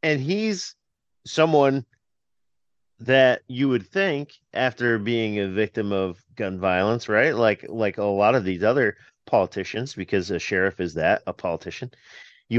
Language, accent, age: English, American, 30-49